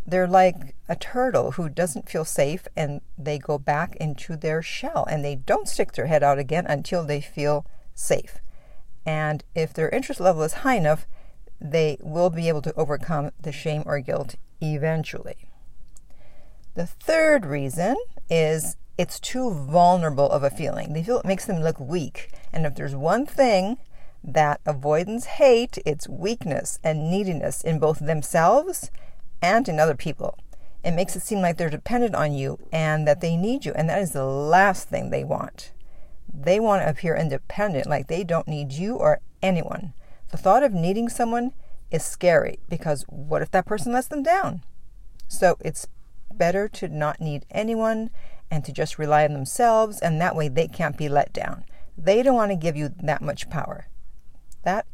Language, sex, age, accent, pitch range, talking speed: English, female, 50-69, American, 150-190 Hz, 175 wpm